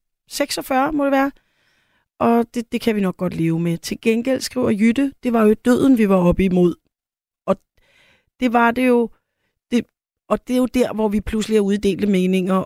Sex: female